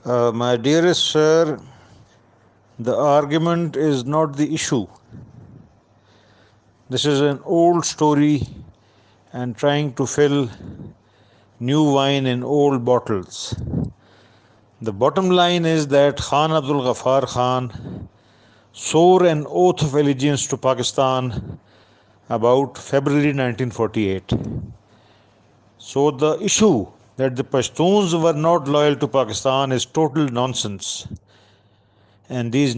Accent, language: Indian, English